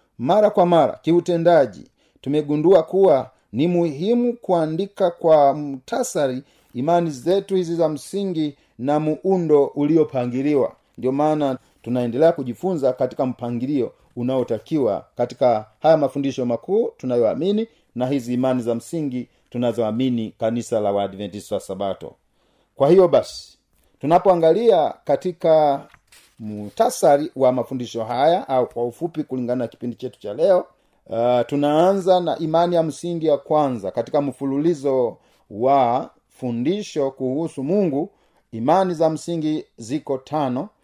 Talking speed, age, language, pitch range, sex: 120 wpm, 40-59, Swahili, 125-165 Hz, male